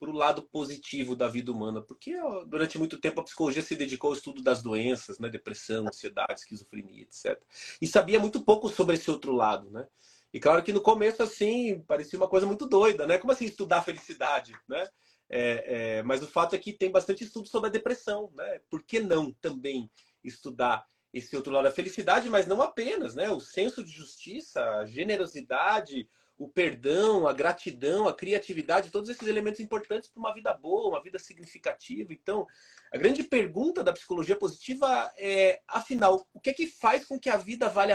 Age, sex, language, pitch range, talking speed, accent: 30-49, male, Portuguese, 135-230 Hz, 190 wpm, Brazilian